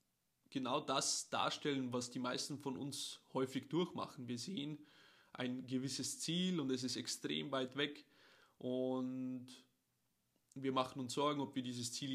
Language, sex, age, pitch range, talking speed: German, male, 20-39, 130-150 Hz, 150 wpm